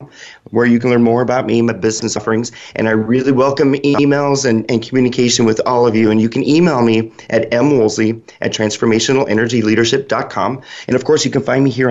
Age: 30-49